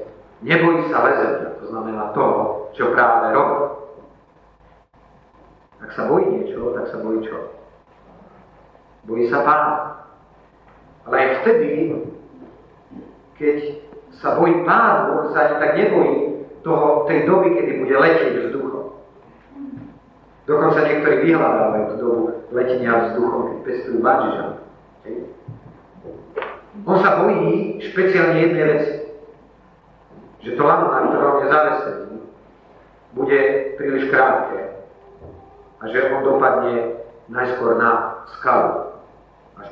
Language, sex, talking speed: Slovak, male, 105 wpm